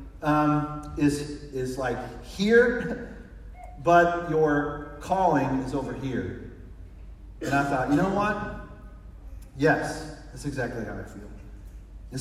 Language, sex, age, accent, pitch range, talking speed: English, male, 40-59, American, 135-175 Hz, 120 wpm